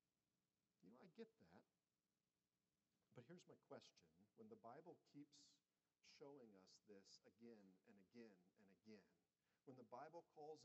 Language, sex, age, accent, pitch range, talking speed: English, male, 40-59, American, 115-170 Hz, 125 wpm